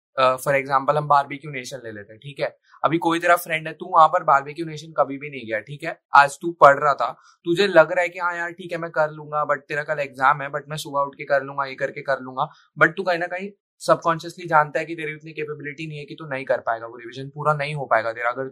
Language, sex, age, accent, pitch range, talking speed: Hindi, male, 20-39, native, 140-175 Hz, 290 wpm